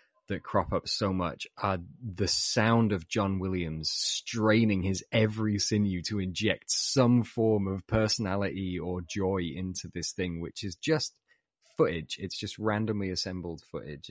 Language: English